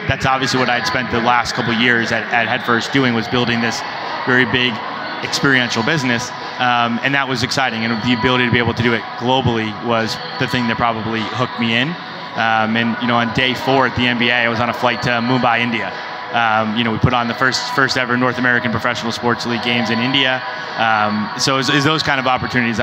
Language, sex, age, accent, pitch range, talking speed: English, male, 20-39, American, 115-125 Hz, 240 wpm